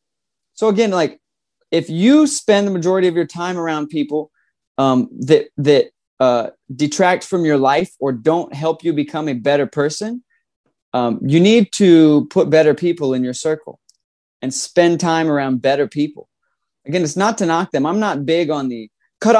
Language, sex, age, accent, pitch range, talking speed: English, male, 20-39, American, 135-190 Hz, 175 wpm